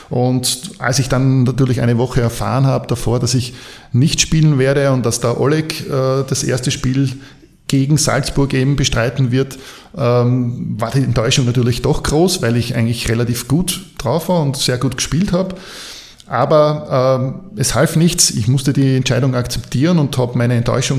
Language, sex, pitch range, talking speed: German, male, 130-160 Hz, 170 wpm